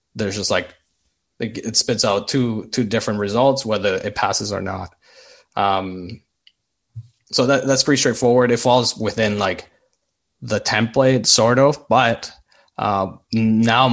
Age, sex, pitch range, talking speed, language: 20-39, male, 105-125 Hz, 140 wpm, English